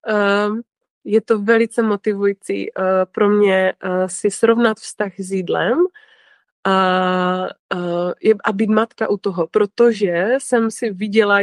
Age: 20-39